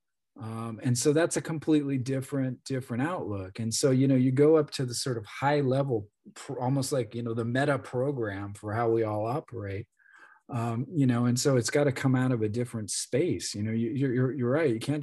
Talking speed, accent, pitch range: 230 wpm, American, 115-135 Hz